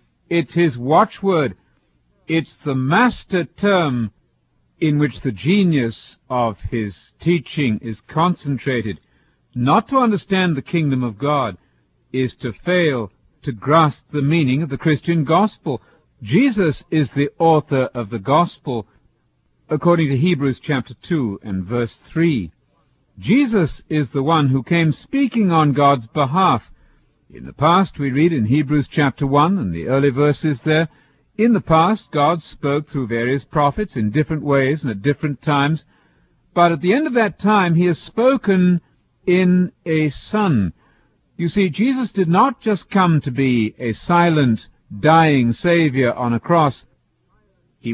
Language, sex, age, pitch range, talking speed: English, male, 50-69, 125-175 Hz, 150 wpm